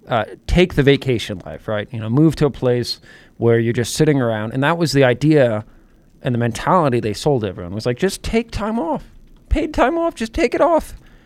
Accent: American